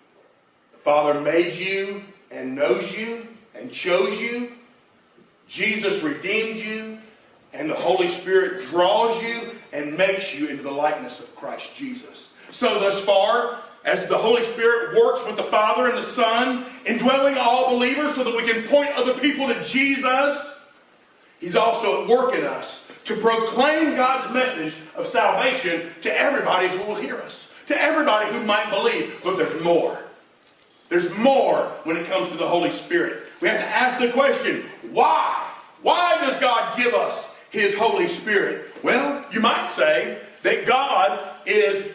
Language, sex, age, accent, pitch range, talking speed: English, male, 40-59, American, 195-270 Hz, 155 wpm